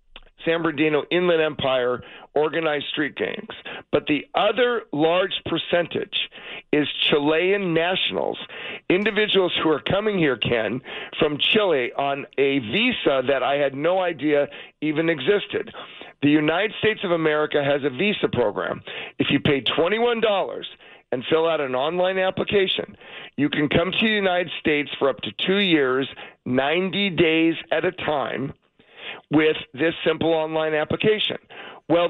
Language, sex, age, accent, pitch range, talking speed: English, male, 50-69, American, 145-185 Hz, 140 wpm